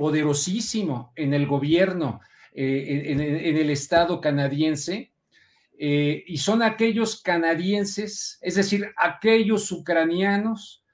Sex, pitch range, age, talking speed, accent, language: male, 155-200 Hz, 50-69, 105 wpm, Mexican, Spanish